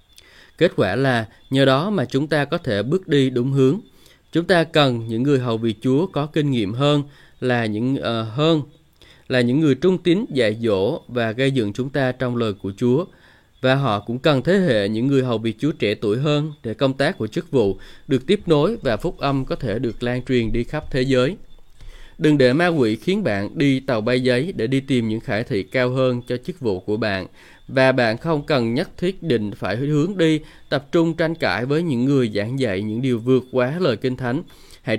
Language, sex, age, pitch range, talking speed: Vietnamese, male, 20-39, 115-140 Hz, 225 wpm